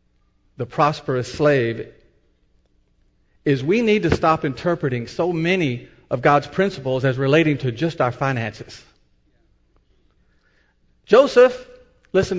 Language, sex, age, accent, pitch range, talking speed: English, male, 50-69, American, 120-180 Hz, 105 wpm